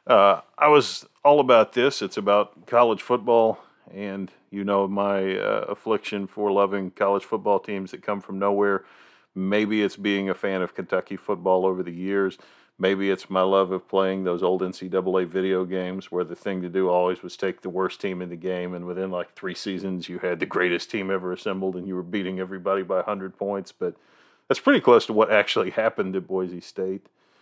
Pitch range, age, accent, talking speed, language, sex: 90-100 Hz, 40-59, American, 200 wpm, English, male